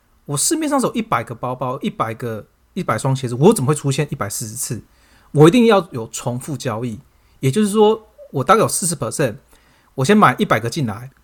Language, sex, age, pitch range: Chinese, male, 30-49, 120-170 Hz